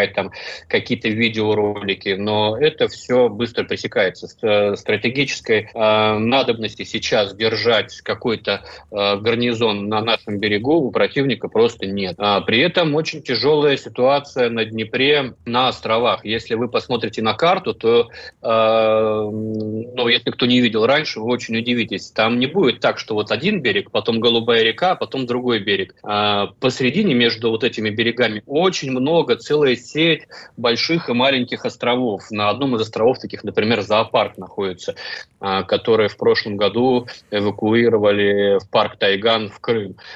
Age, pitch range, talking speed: 30-49, 110-135 Hz, 145 wpm